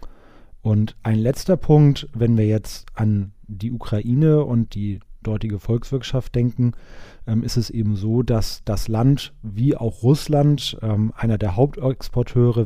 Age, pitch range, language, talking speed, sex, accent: 30-49, 110-130 Hz, German, 140 wpm, male, German